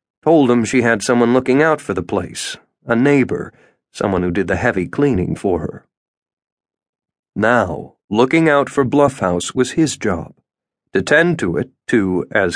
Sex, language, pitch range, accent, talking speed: male, English, 100-140 Hz, American, 165 wpm